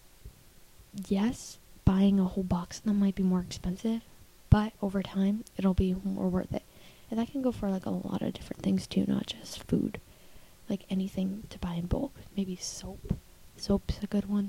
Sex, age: female, 20-39